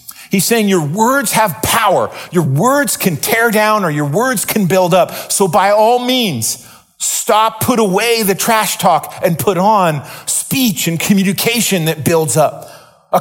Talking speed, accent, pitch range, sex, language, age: 170 wpm, American, 145-215 Hz, male, English, 40-59